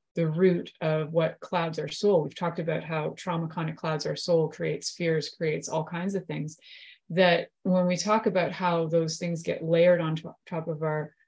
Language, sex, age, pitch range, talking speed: English, female, 30-49, 160-190 Hz, 205 wpm